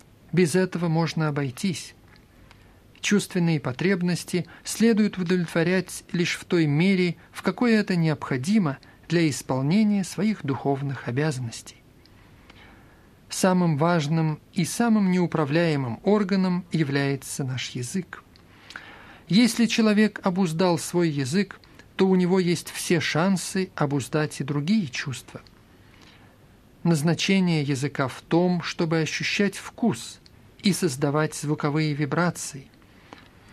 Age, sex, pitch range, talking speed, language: 50-69, male, 140-190 Hz, 100 wpm, Russian